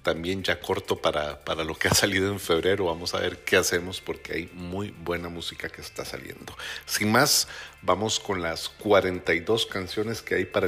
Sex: male